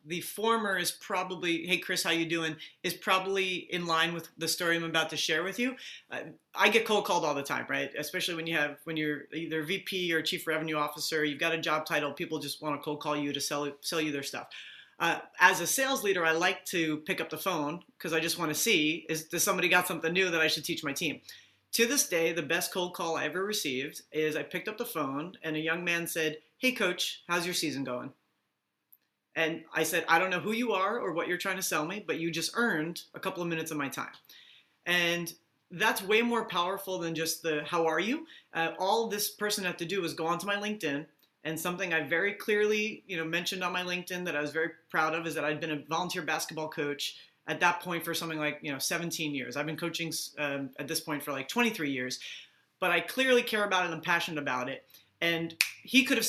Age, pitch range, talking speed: 30-49, 155-185 Hz, 245 wpm